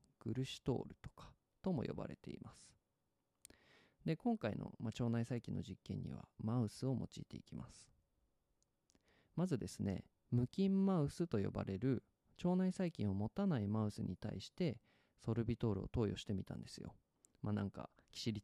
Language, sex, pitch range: Japanese, male, 105-145 Hz